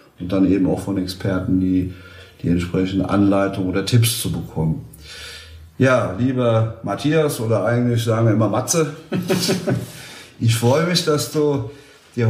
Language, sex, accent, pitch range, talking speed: German, male, German, 95-120 Hz, 140 wpm